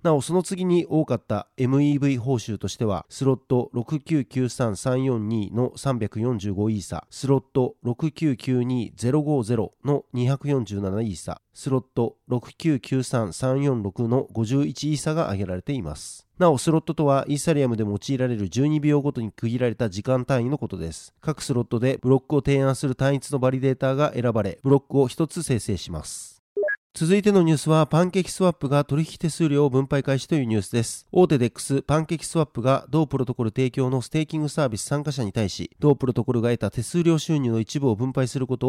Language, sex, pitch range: Japanese, male, 120-145 Hz